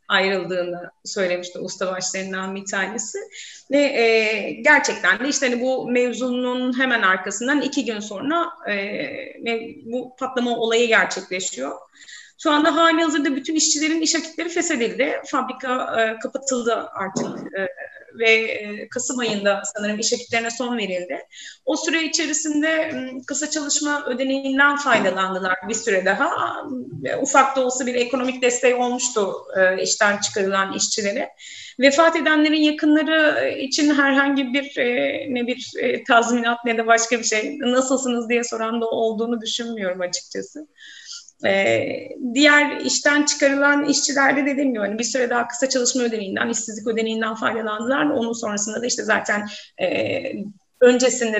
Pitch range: 220-280 Hz